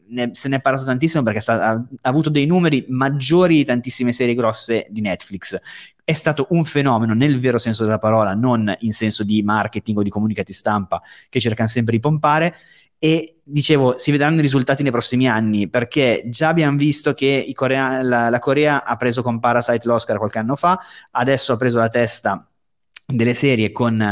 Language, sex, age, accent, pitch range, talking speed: Italian, male, 30-49, native, 110-140 Hz, 195 wpm